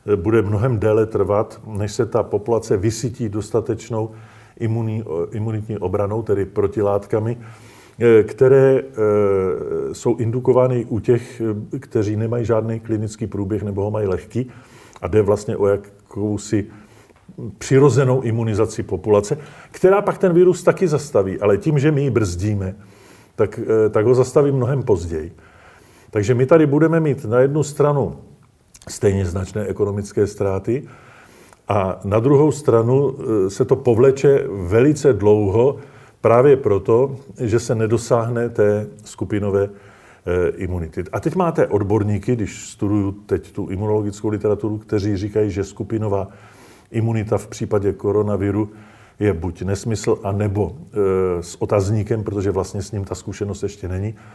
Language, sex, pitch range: Czech, male, 100-120 Hz